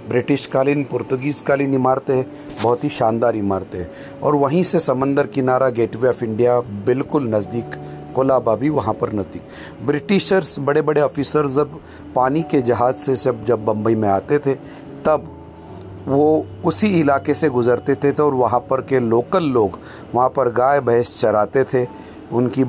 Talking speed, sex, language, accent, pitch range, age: 155 wpm, male, Hindi, native, 115-140 Hz, 40-59